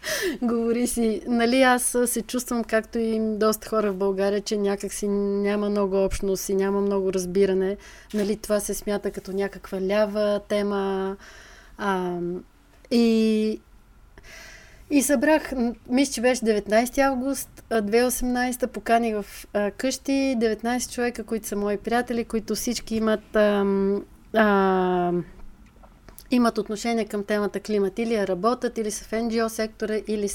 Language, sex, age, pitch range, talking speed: Bulgarian, female, 30-49, 200-240 Hz, 130 wpm